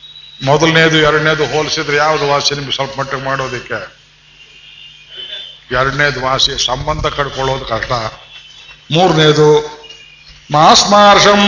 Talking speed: 80 wpm